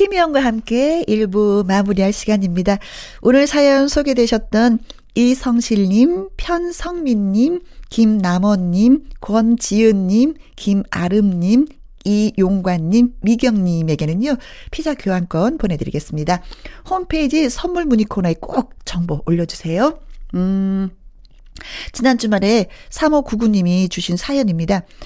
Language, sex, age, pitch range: Korean, female, 40-59, 185-255 Hz